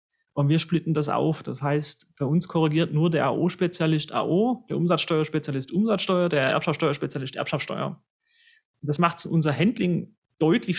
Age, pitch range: 30-49, 140-180 Hz